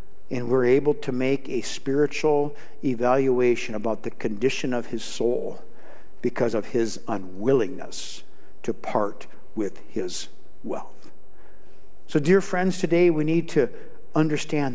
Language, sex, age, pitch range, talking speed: English, male, 60-79, 125-160 Hz, 125 wpm